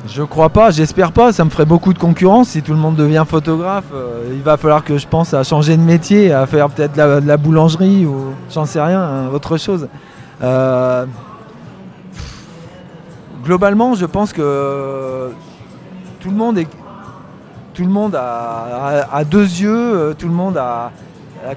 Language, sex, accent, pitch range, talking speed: French, male, French, 140-180 Hz, 175 wpm